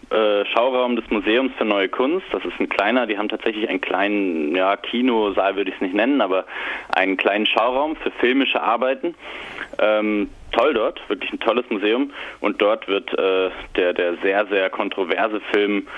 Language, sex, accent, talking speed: German, male, German, 175 wpm